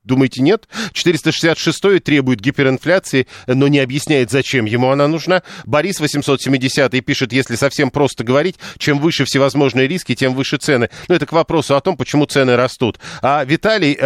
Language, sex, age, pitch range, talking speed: Russian, male, 40-59, 130-155 Hz, 160 wpm